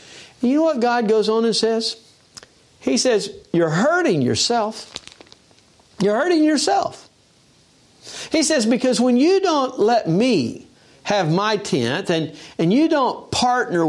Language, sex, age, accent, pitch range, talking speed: English, male, 60-79, American, 180-280 Hz, 140 wpm